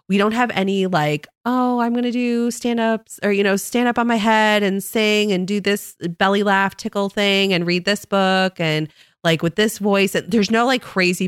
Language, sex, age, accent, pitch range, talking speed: English, female, 20-39, American, 145-195 Hz, 225 wpm